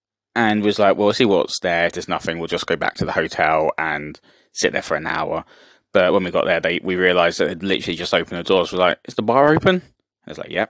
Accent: British